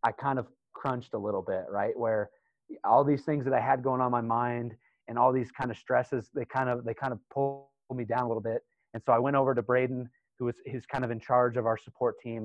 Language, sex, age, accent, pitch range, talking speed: English, male, 30-49, American, 110-130 Hz, 265 wpm